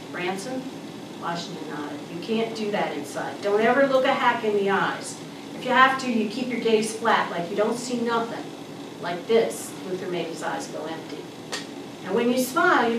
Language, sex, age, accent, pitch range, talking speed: English, female, 50-69, American, 185-255 Hz, 200 wpm